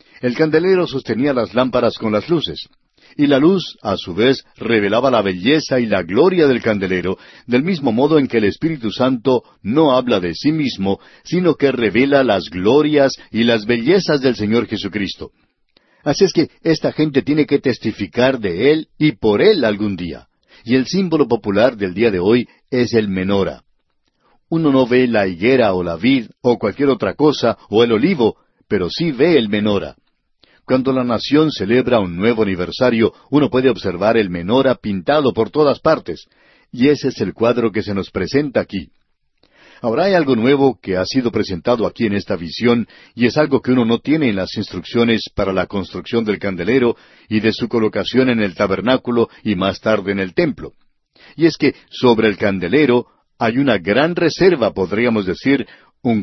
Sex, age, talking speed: male, 60-79, 180 wpm